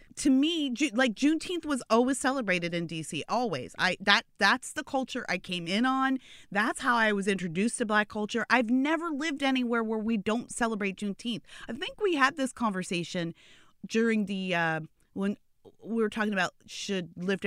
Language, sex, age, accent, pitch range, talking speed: English, female, 30-49, American, 175-255 Hz, 180 wpm